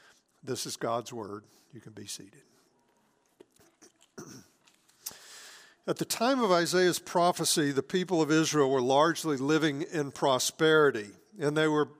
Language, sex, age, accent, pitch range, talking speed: English, male, 50-69, American, 140-170 Hz, 130 wpm